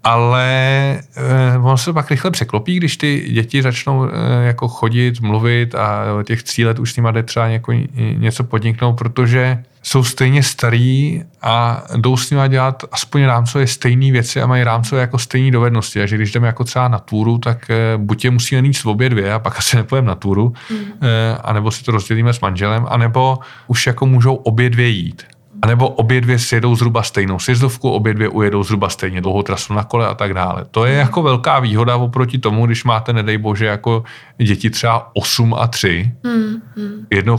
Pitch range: 110-125 Hz